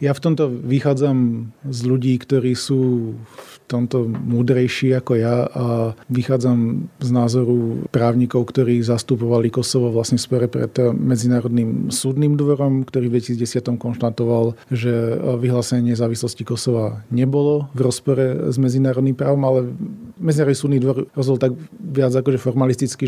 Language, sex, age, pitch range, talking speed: Slovak, male, 40-59, 120-135 Hz, 135 wpm